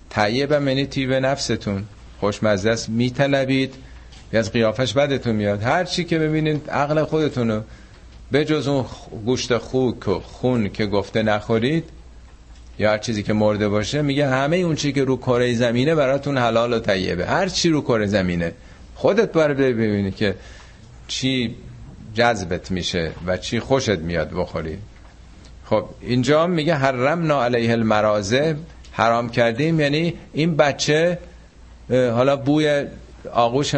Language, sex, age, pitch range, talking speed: Persian, male, 50-69, 105-135 Hz, 140 wpm